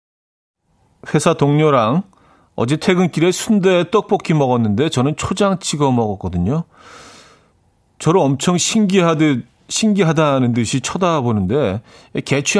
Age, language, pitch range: 40-59, Korean, 110-165 Hz